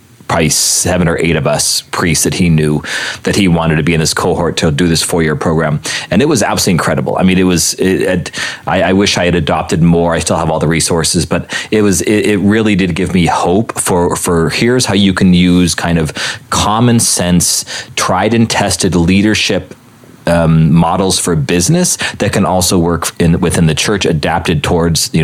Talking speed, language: 210 wpm, English